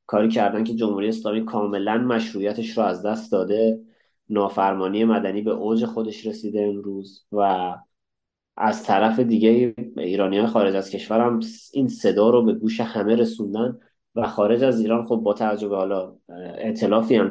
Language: Persian